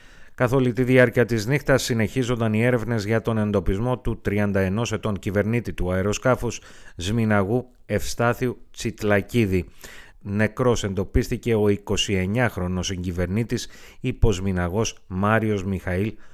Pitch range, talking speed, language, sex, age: 100-125 Hz, 105 wpm, Greek, male, 30-49